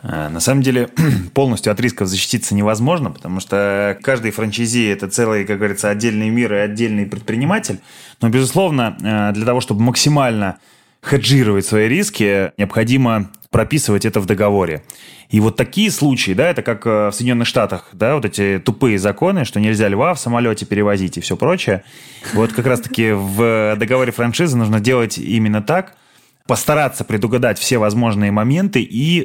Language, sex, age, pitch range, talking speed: Russian, male, 20-39, 105-130 Hz, 155 wpm